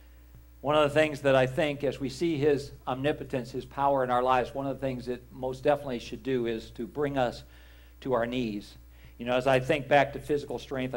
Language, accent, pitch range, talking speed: English, American, 105-130 Hz, 230 wpm